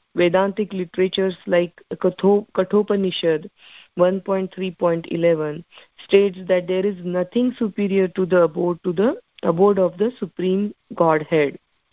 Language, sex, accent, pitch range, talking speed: English, female, Indian, 180-215 Hz, 130 wpm